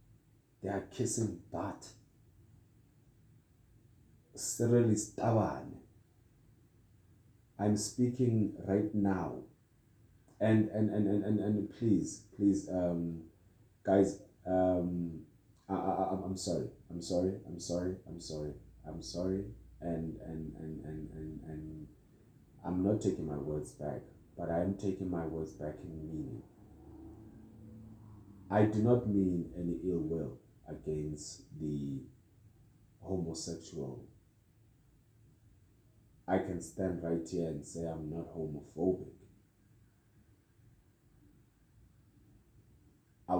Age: 30-49